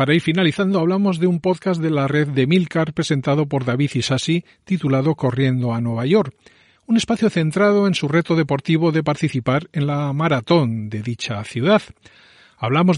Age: 40-59